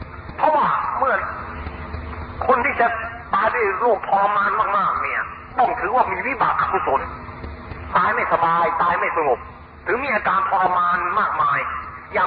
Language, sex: Thai, male